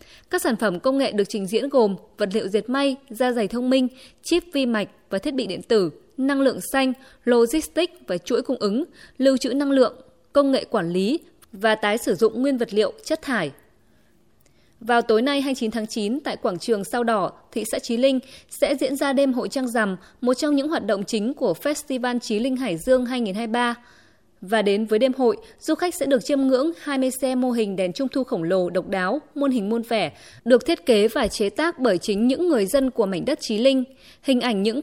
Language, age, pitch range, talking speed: Vietnamese, 20-39, 220-275 Hz, 225 wpm